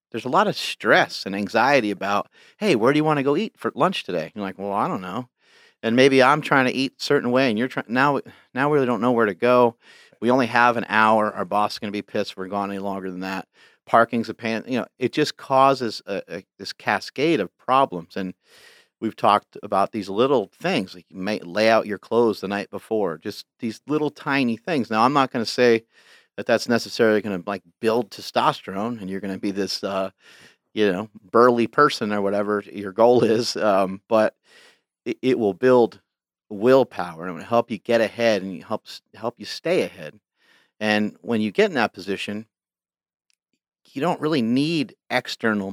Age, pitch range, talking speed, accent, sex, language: 40-59, 100-120 Hz, 210 wpm, American, male, English